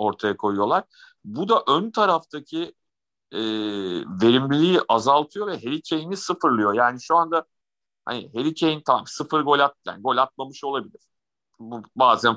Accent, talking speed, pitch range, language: native, 140 wpm, 120-160 Hz, Turkish